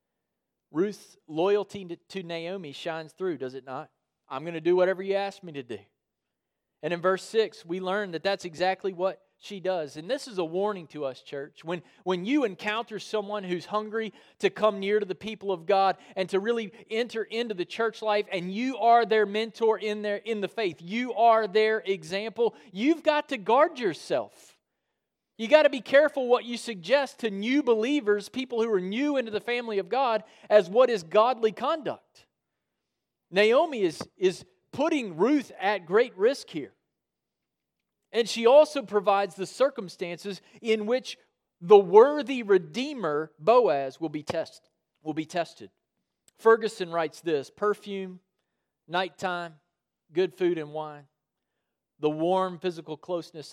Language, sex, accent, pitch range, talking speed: English, male, American, 175-225 Hz, 165 wpm